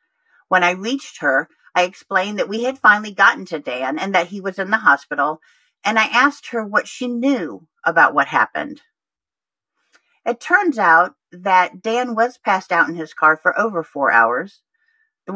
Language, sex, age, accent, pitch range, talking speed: English, female, 50-69, American, 170-245 Hz, 180 wpm